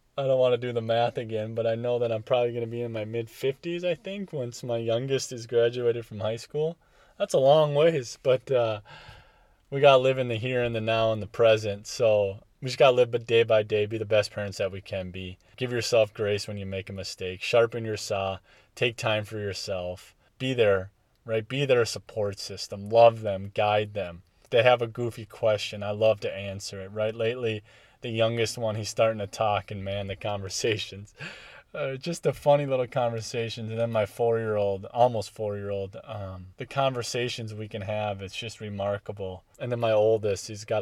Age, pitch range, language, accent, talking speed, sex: 20-39, 100-120 Hz, English, American, 210 wpm, male